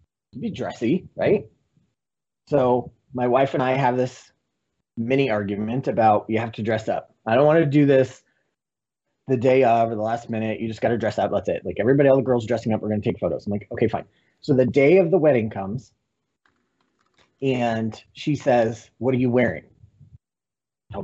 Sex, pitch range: male, 115-145 Hz